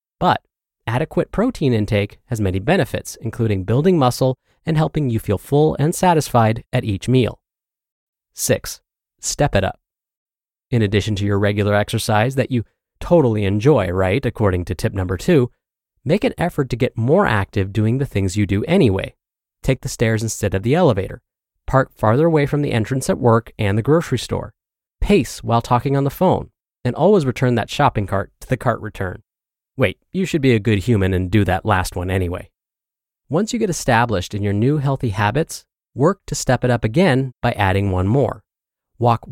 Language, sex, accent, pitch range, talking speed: English, male, American, 105-140 Hz, 185 wpm